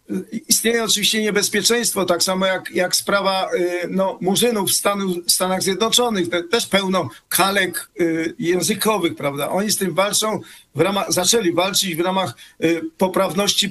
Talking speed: 135 wpm